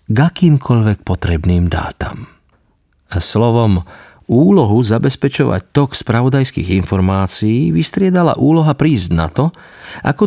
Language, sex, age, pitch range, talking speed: Slovak, male, 40-59, 95-135 Hz, 95 wpm